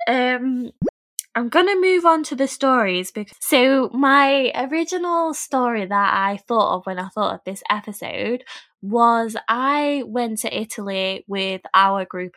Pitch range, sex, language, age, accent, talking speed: 195-250 Hz, female, English, 10-29, British, 150 wpm